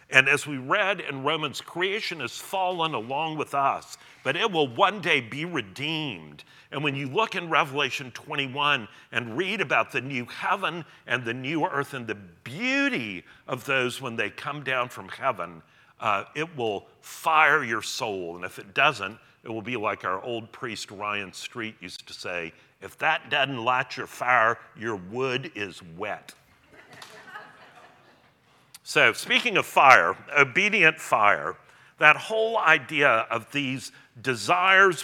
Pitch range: 120-170 Hz